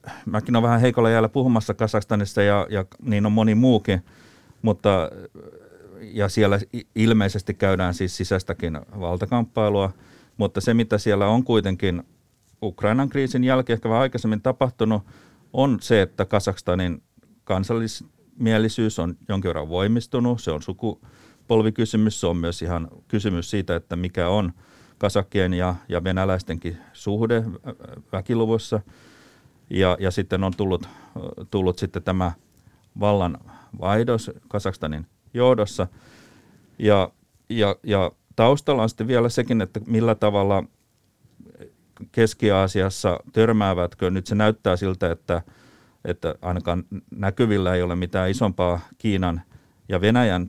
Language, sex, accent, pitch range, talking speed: Finnish, male, native, 90-115 Hz, 120 wpm